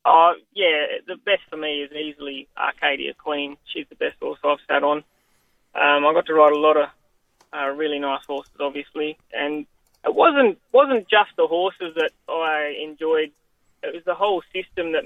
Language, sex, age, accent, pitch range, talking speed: English, male, 20-39, Australian, 150-170 Hz, 185 wpm